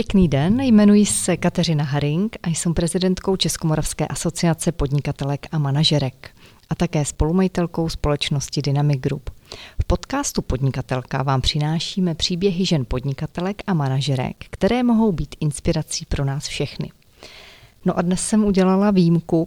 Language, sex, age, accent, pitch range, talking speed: Czech, female, 30-49, native, 155-185 Hz, 135 wpm